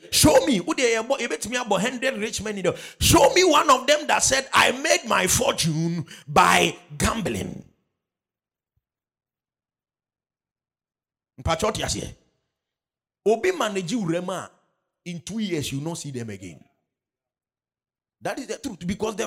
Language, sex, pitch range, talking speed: English, male, 165-240 Hz, 95 wpm